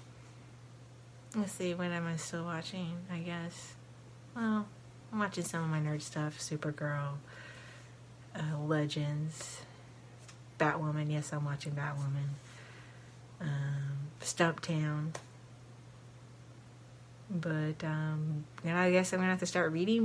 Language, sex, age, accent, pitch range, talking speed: English, female, 30-49, American, 125-170 Hz, 115 wpm